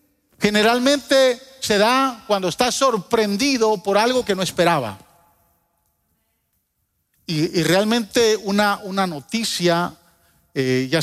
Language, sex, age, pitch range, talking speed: Spanish, male, 40-59, 125-165 Hz, 105 wpm